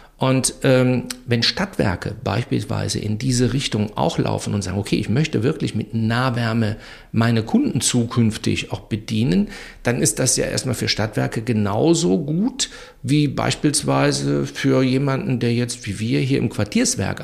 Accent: German